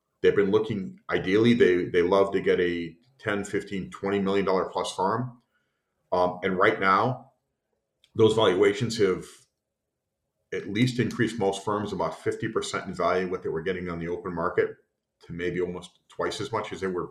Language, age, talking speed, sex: English, 40-59, 170 wpm, male